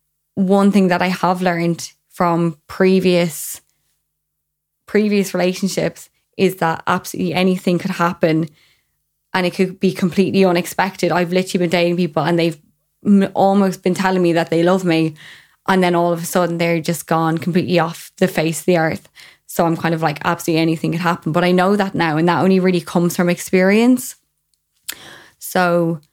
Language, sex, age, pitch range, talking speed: English, female, 20-39, 170-195 Hz, 175 wpm